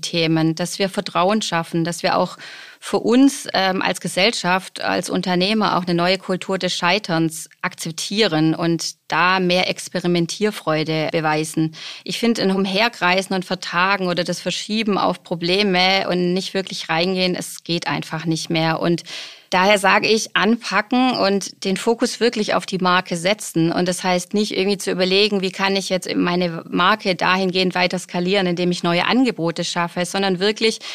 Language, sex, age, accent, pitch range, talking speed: German, female, 30-49, German, 175-200 Hz, 160 wpm